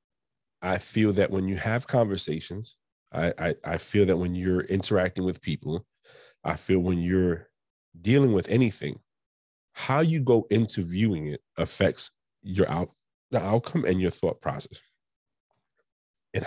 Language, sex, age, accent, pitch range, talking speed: English, male, 30-49, American, 85-110 Hz, 145 wpm